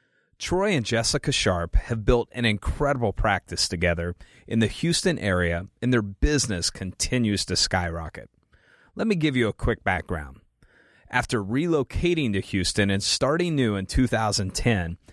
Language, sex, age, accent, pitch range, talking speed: English, male, 30-49, American, 95-125 Hz, 145 wpm